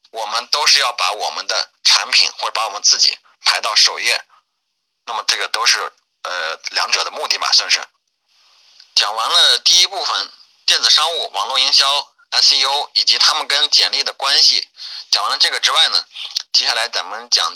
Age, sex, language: 30-49, male, Chinese